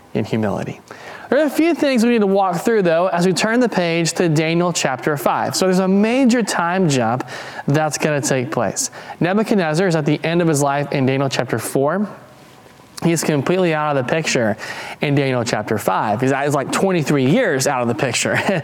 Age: 20-39